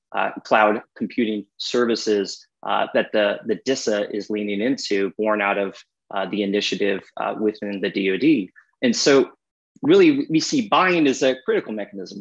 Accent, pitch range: American, 105-130 Hz